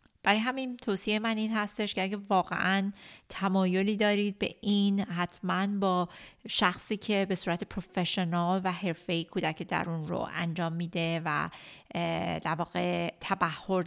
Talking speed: 135 wpm